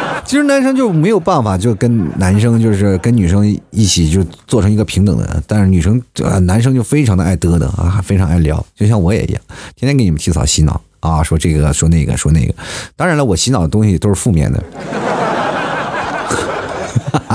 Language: Chinese